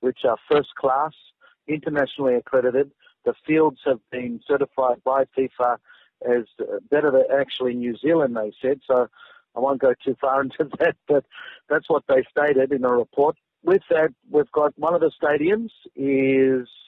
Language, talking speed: English, 160 wpm